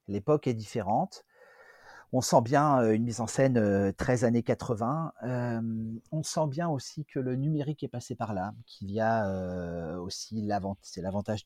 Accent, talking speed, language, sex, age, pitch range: French, 175 wpm, French, male, 40-59, 100-145 Hz